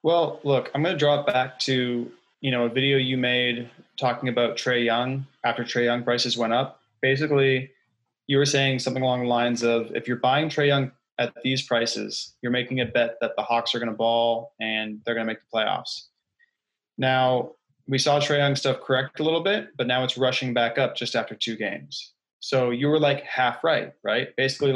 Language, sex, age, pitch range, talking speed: English, male, 20-39, 120-135 Hz, 215 wpm